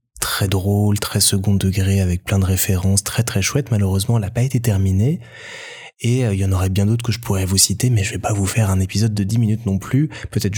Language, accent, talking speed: French, French, 255 wpm